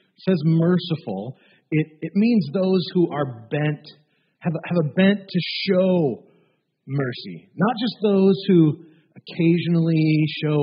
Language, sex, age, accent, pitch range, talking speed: English, male, 40-59, American, 150-185 Hz, 130 wpm